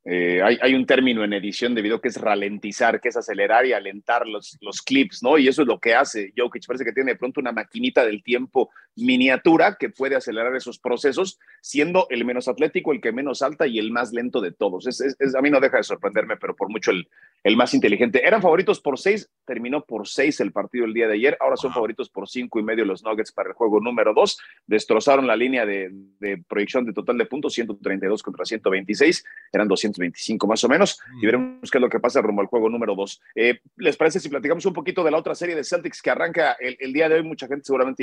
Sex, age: male, 40-59